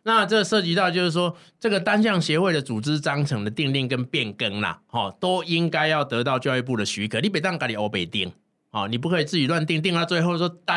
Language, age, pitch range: Chinese, 20-39, 120-165 Hz